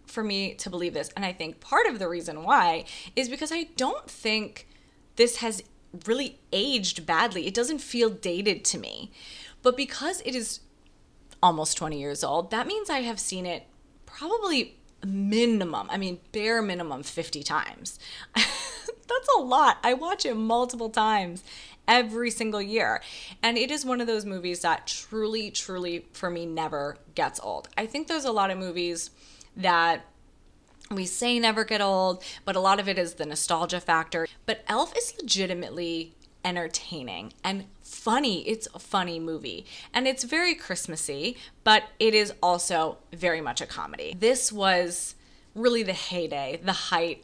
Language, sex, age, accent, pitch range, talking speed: English, female, 20-39, American, 165-225 Hz, 165 wpm